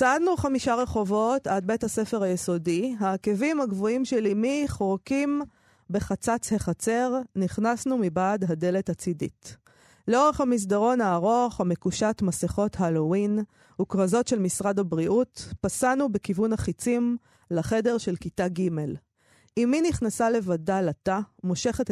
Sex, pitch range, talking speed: female, 180-235 Hz, 110 wpm